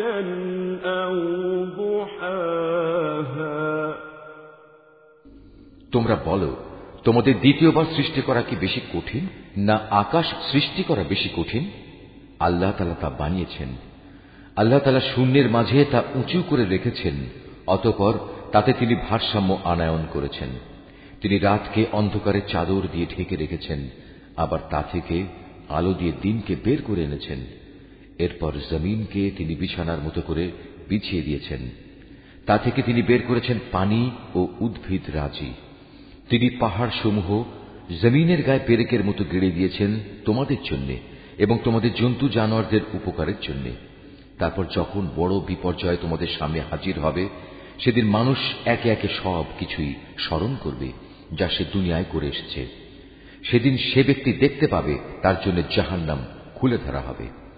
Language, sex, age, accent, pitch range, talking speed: Bengali, male, 50-69, native, 85-130 Hz, 100 wpm